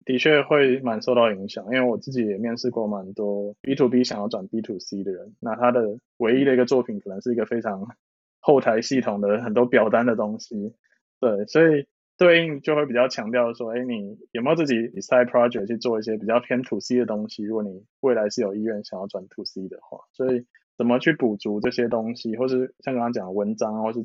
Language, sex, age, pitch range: Chinese, male, 20-39, 105-125 Hz